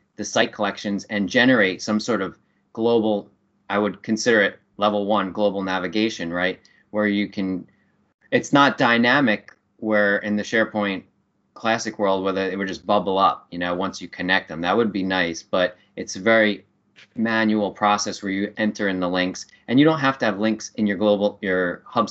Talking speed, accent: 185 wpm, American